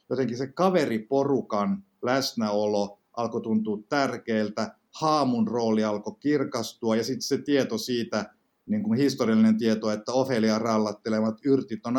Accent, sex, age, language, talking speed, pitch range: native, male, 50-69, Finnish, 125 wpm, 110-140 Hz